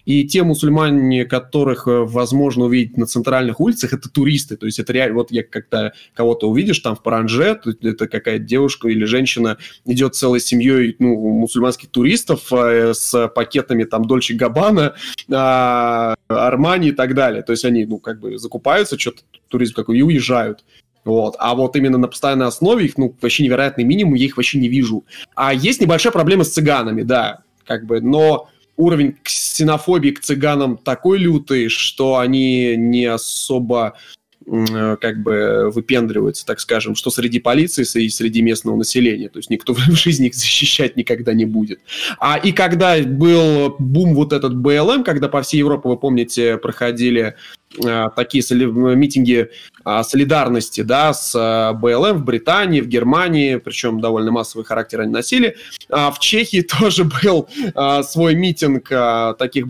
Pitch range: 120-150 Hz